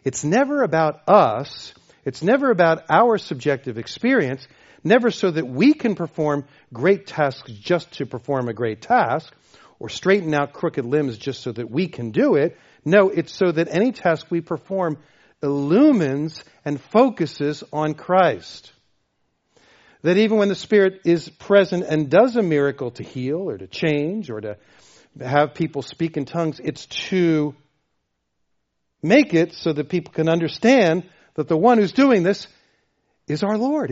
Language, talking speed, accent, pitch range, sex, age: English, 160 wpm, American, 130-185 Hz, male, 40-59